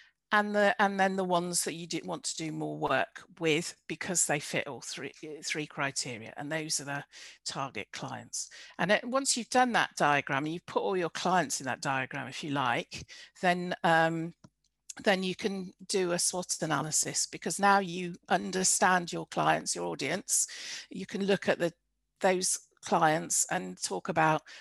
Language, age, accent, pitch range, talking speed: English, 50-69, British, 150-195 Hz, 180 wpm